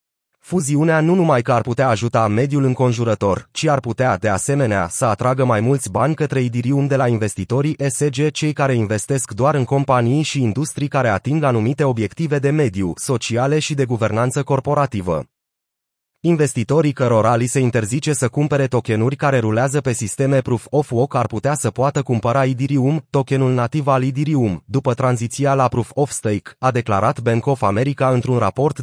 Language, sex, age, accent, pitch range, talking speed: Romanian, male, 30-49, native, 120-145 Hz, 160 wpm